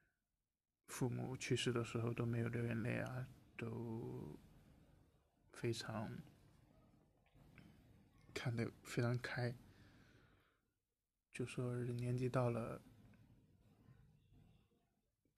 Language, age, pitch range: Chinese, 20-39, 115-130 Hz